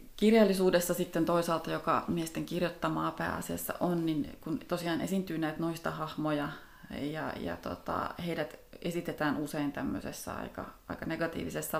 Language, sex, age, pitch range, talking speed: Finnish, female, 30-49, 150-175 Hz, 125 wpm